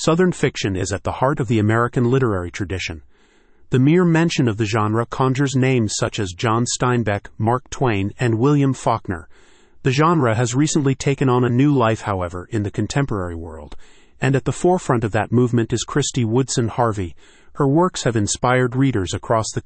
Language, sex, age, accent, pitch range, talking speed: English, male, 40-59, American, 105-135 Hz, 185 wpm